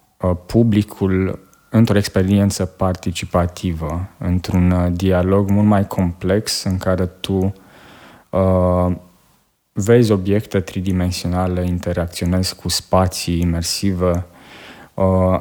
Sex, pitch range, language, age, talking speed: male, 90-105 Hz, Romanian, 20-39, 80 wpm